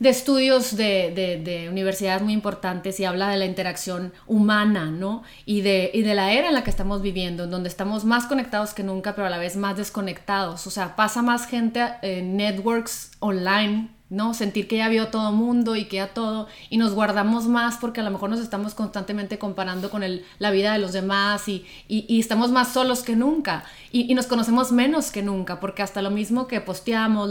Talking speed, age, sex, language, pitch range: 210 wpm, 30-49, female, Spanish, 195-235 Hz